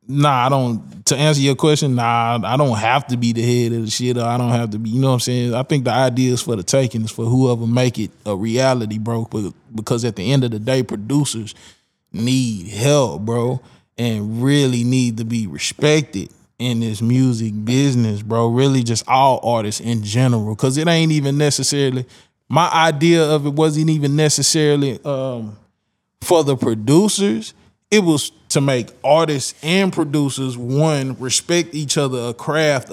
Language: English